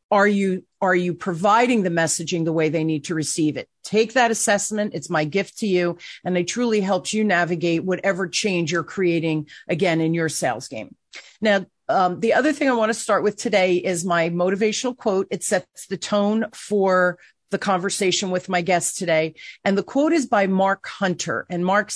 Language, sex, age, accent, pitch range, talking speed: English, female, 40-59, American, 170-210 Hz, 195 wpm